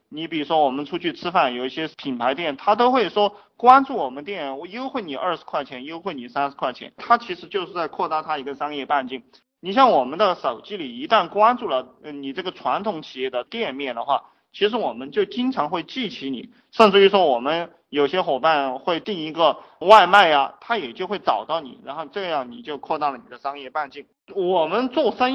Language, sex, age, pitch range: Chinese, male, 20-39, 140-230 Hz